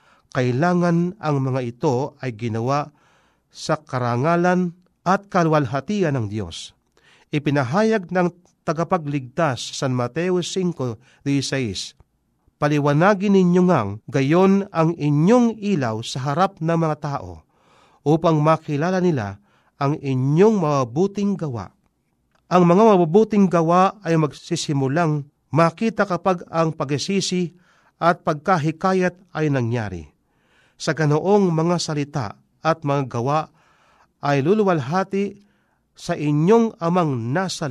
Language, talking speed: Filipino, 105 wpm